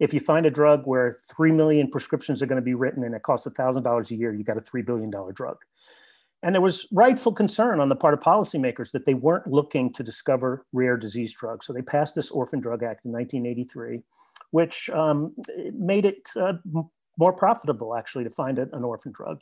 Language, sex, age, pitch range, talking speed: English, male, 40-59, 125-170 Hz, 200 wpm